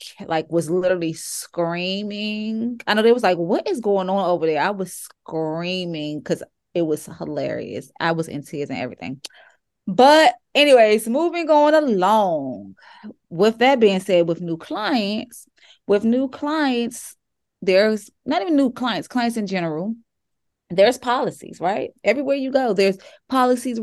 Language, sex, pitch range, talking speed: English, female, 175-245 Hz, 150 wpm